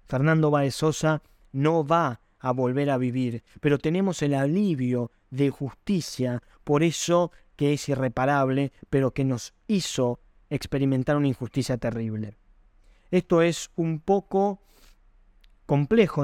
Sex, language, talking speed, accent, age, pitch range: male, Spanish, 120 wpm, Argentinian, 20-39, 130-160 Hz